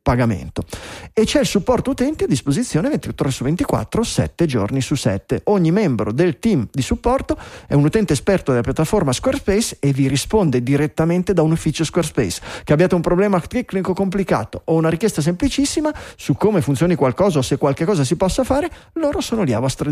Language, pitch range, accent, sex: Italian, 135-195 Hz, native, male